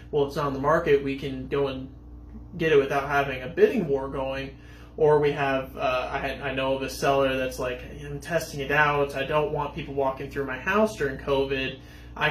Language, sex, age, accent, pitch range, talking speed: English, male, 20-39, American, 130-150 Hz, 220 wpm